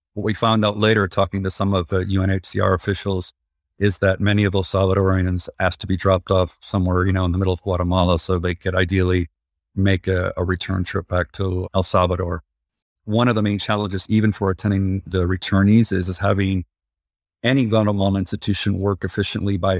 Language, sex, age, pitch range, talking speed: English, male, 40-59, 90-100 Hz, 190 wpm